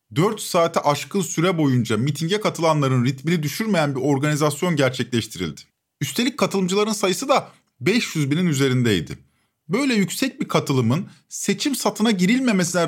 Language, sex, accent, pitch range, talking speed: Turkish, male, native, 145-215 Hz, 120 wpm